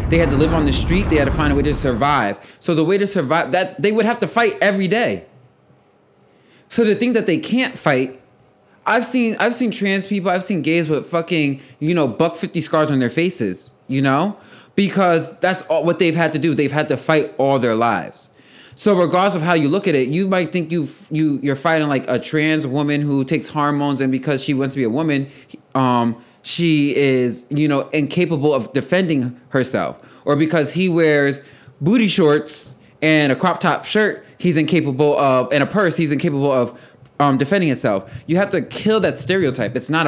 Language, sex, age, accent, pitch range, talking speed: English, male, 20-39, American, 135-195 Hz, 210 wpm